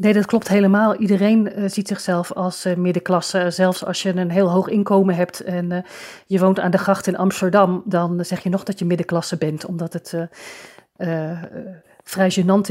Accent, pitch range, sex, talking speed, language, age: Dutch, 180-200 Hz, female, 185 wpm, Dutch, 40-59